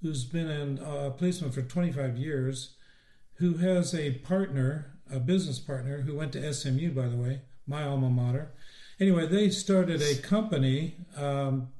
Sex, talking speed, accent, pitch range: male, 165 wpm, American, 135-165 Hz